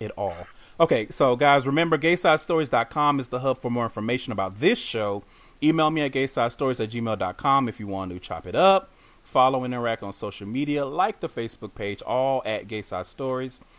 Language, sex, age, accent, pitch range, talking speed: English, male, 30-49, American, 110-140 Hz, 185 wpm